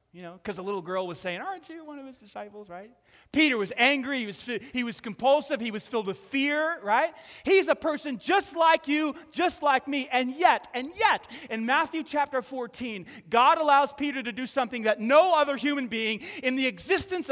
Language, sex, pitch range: English, male, 200-305 Hz